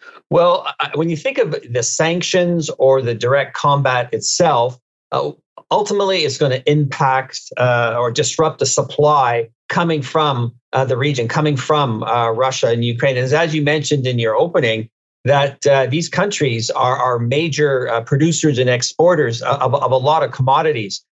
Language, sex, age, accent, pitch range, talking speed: English, male, 50-69, American, 130-155 Hz, 160 wpm